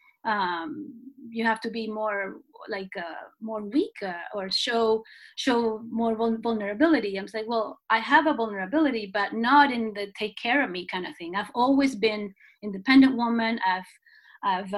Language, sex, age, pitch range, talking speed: English, female, 30-49, 210-255 Hz, 165 wpm